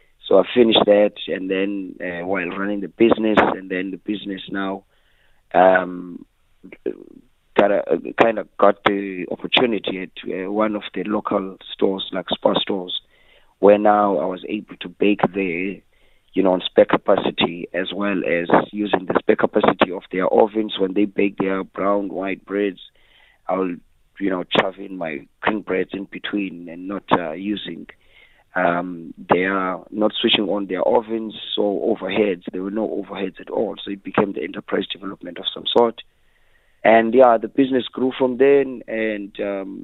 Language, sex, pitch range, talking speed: English, male, 95-105 Hz, 165 wpm